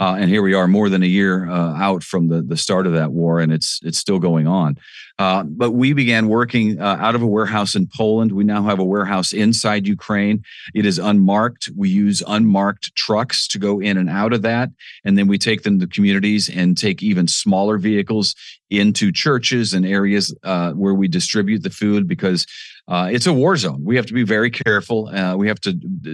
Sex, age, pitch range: male, 40-59, 95-120 Hz